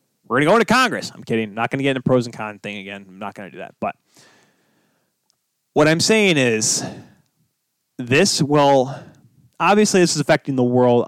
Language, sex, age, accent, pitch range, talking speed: English, male, 20-39, American, 120-145 Hz, 200 wpm